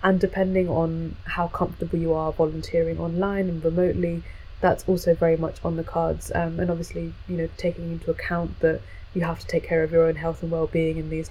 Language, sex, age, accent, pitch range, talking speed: English, female, 20-39, British, 165-175 Hz, 210 wpm